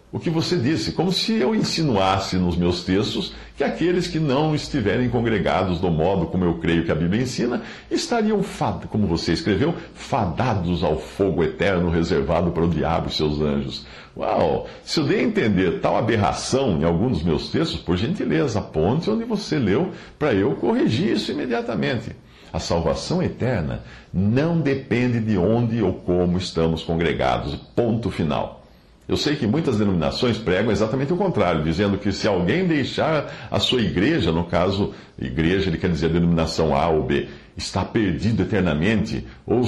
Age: 60-79